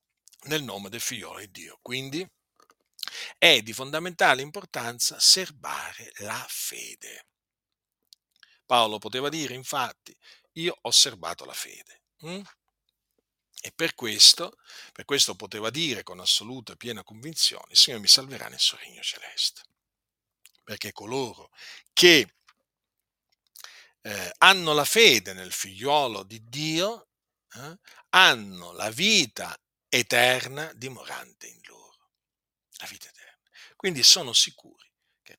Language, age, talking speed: Italian, 50-69, 115 wpm